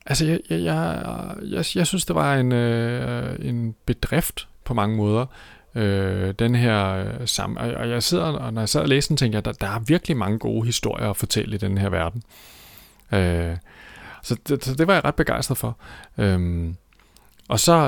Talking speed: 160 wpm